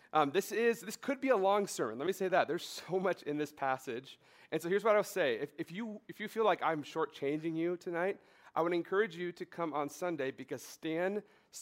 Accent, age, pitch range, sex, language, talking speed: American, 40-59, 140-180 Hz, male, English, 240 wpm